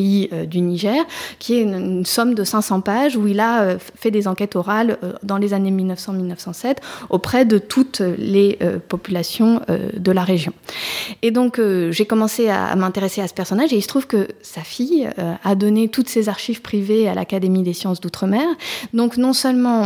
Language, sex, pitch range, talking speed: English, female, 190-240 Hz, 195 wpm